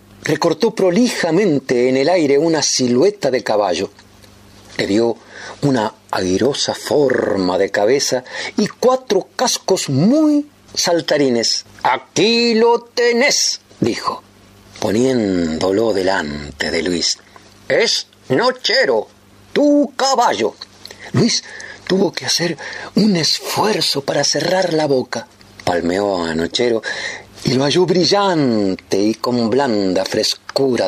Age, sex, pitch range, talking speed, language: 50-69, male, 120-200 Hz, 105 wpm, Spanish